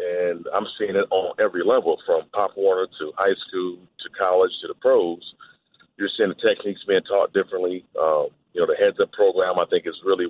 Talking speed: 205 wpm